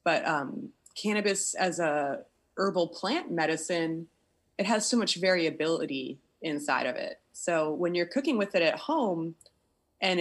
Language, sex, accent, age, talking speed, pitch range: English, female, American, 20-39, 145 wpm, 160-200 Hz